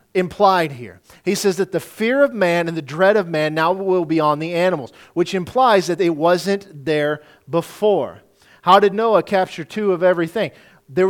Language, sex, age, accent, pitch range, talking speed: English, male, 40-59, American, 160-200 Hz, 190 wpm